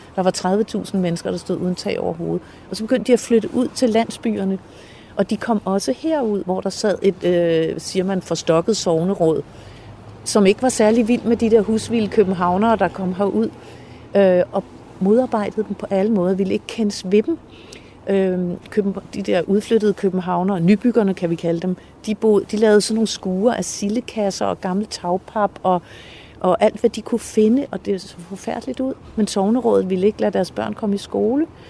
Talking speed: 195 wpm